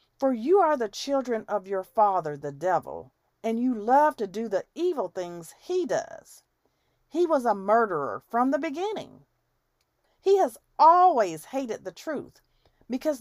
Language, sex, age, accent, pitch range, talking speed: English, female, 40-59, American, 170-270 Hz, 155 wpm